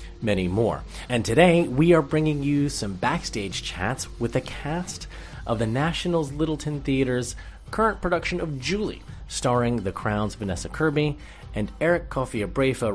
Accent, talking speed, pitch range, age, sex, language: American, 145 wpm, 95-125 Hz, 30-49, male, English